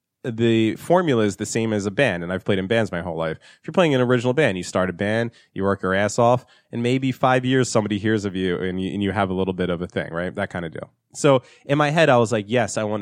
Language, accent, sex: English, American, male